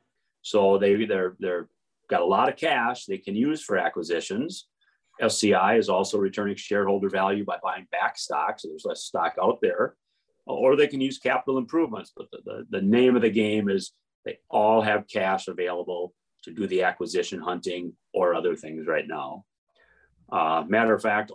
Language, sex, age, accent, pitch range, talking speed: English, male, 40-59, American, 95-130 Hz, 175 wpm